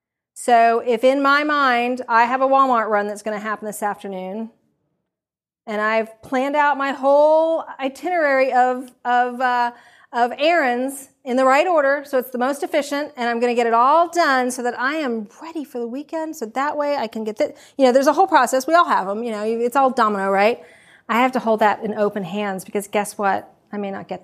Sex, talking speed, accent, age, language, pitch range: female, 225 wpm, American, 40-59, English, 215-280 Hz